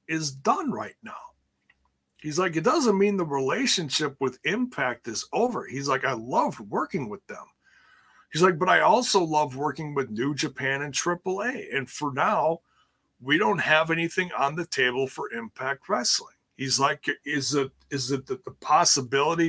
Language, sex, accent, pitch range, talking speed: English, male, American, 135-185 Hz, 175 wpm